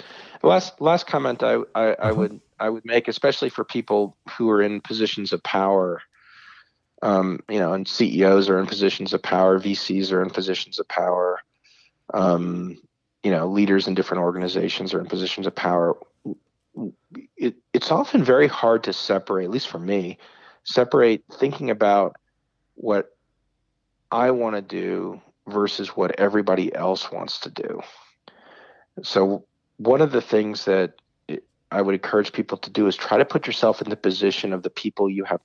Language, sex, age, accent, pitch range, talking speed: English, male, 40-59, American, 95-110 Hz, 165 wpm